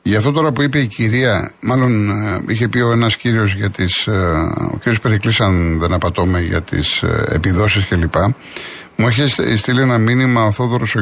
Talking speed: 180 wpm